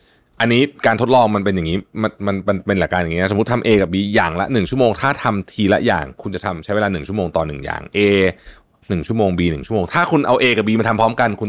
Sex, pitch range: male, 90-115 Hz